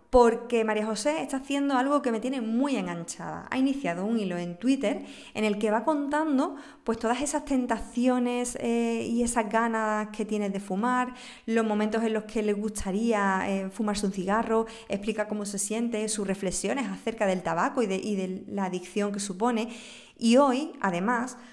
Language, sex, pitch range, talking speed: Spanish, female, 200-255 Hz, 175 wpm